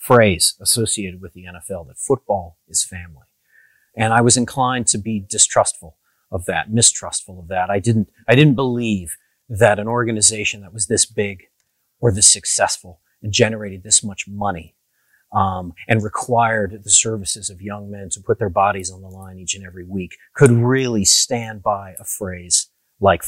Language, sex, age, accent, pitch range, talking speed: English, male, 40-59, American, 100-130 Hz, 175 wpm